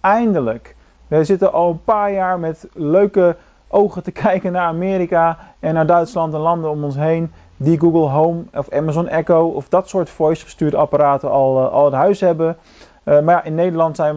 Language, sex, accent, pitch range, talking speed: Dutch, male, Dutch, 140-180 Hz, 190 wpm